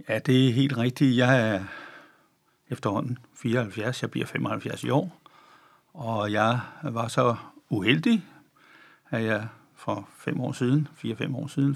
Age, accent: 60-79, native